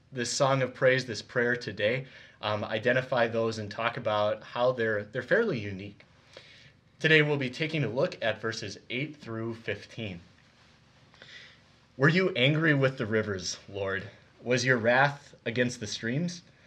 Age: 30-49